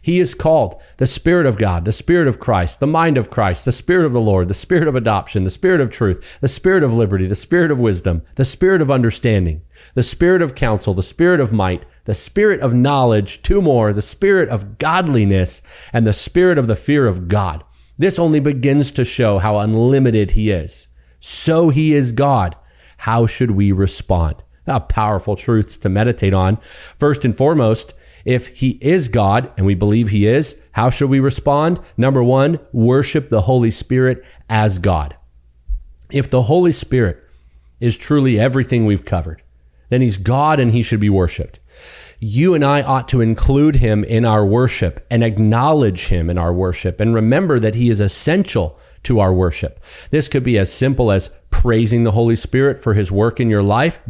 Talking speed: 190 wpm